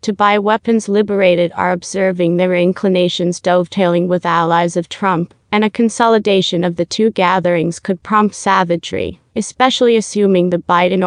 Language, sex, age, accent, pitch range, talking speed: English, female, 30-49, American, 175-200 Hz, 140 wpm